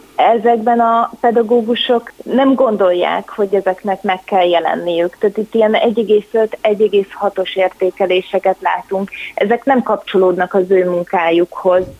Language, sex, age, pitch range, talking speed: Hungarian, female, 30-49, 195-235 Hz, 115 wpm